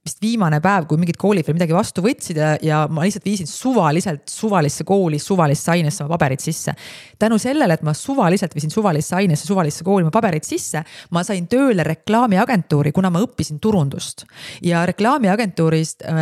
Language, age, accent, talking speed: English, 30-49, Finnish, 165 wpm